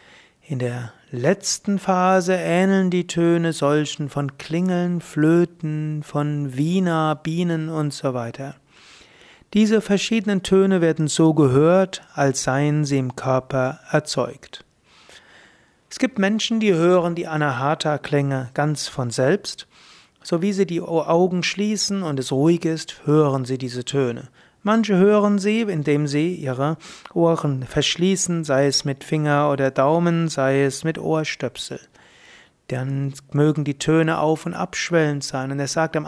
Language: German